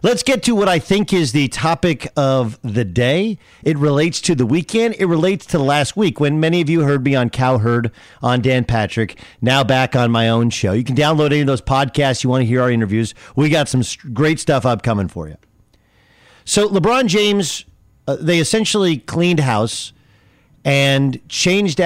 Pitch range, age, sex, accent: 115-160 Hz, 40-59, male, American